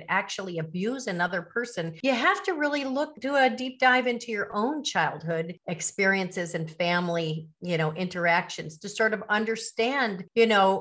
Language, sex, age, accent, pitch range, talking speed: English, female, 40-59, American, 195-245 Hz, 160 wpm